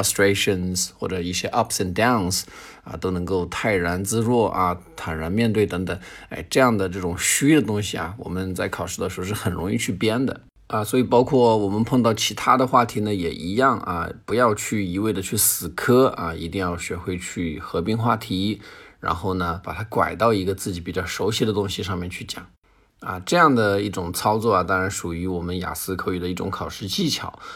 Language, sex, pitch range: Chinese, male, 90-105 Hz